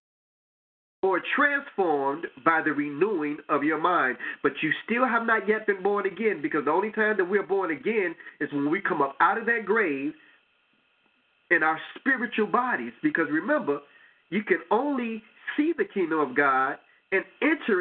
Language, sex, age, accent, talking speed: English, male, 30-49, American, 170 wpm